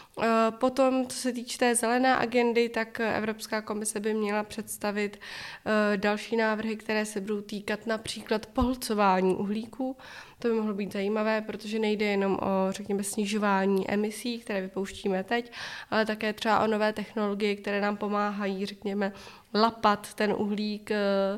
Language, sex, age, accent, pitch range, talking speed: Czech, female, 20-39, native, 205-220 Hz, 140 wpm